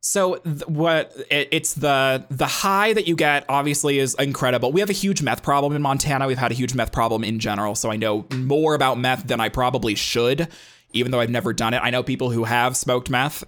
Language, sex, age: English, male, 20-39